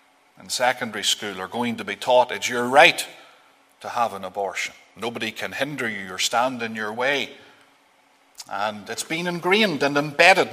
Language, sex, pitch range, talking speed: English, male, 110-145 Hz, 170 wpm